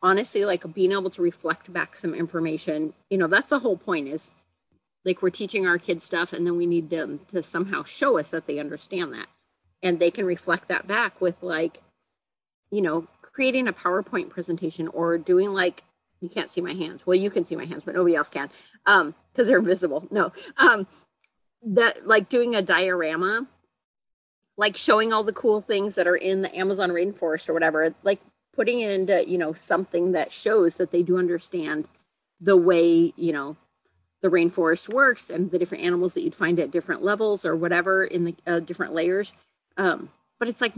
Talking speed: 195 wpm